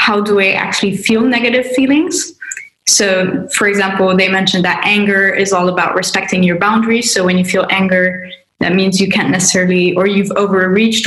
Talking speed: 180 wpm